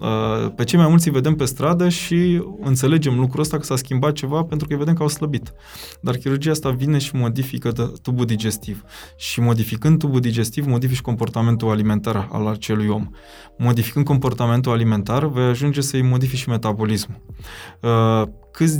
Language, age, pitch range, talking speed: Romanian, 20-39, 115-155 Hz, 160 wpm